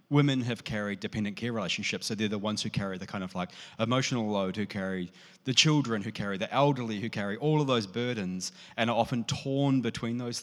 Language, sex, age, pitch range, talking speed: English, male, 30-49, 110-140 Hz, 220 wpm